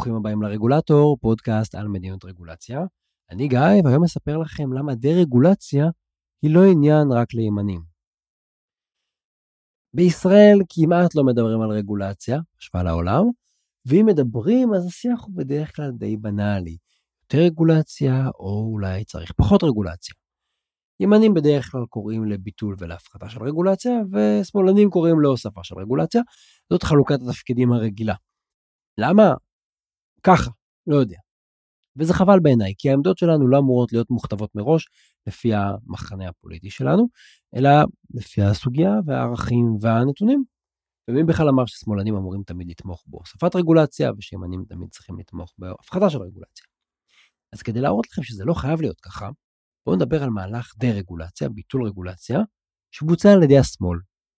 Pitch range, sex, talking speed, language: 100-160 Hz, male, 130 wpm, Hebrew